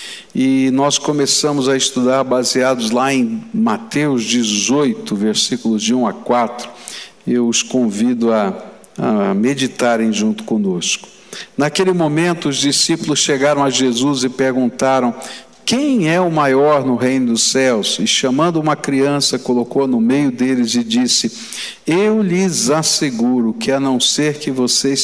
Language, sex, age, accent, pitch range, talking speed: Portuguese, male, 60-79, Brazilian, 125-195 Hz, 140 wpm